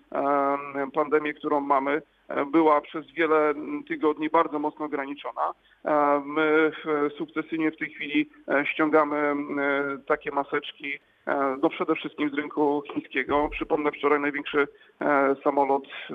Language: Polish